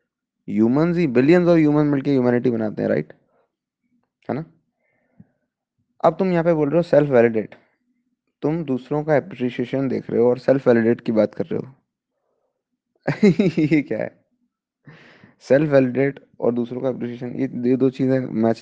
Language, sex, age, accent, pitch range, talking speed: Hindi, male, 20-39, native, 125-175 Hz, 150 wpm